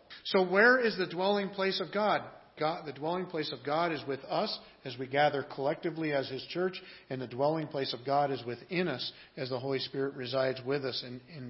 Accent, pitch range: American, 135-165 Hz